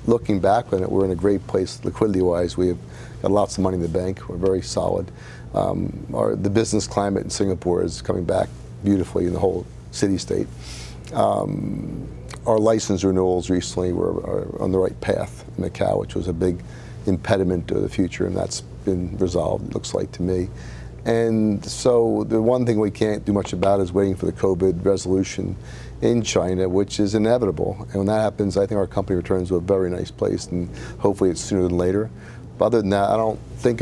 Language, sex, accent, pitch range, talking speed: English, male, American, 90-110 Hz, 195 wpm